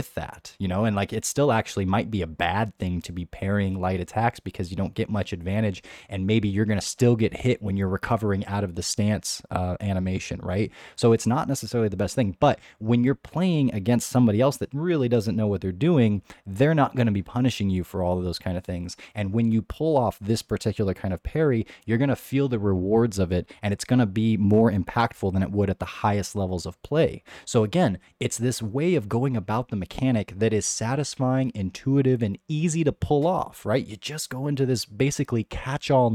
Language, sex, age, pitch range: English, male, 20-39, 100-130 Hz